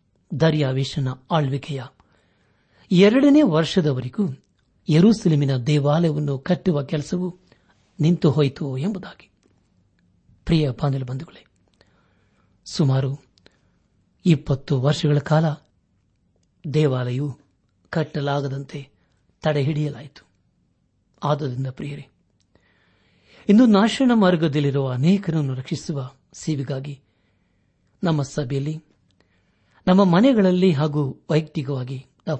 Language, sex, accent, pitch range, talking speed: Kannada, male, native, 130-160 Hz, 55 wpm